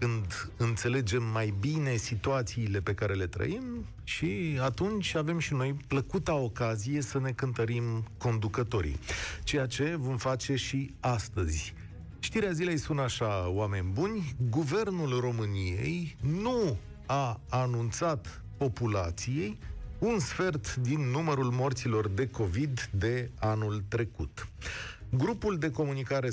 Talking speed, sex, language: 115 wpm, male, Romanian